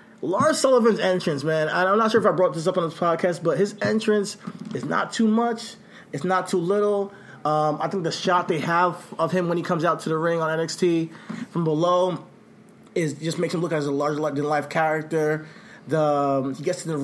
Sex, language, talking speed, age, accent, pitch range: male, English, 225 wpm, 20-39, American, 145-180 Hz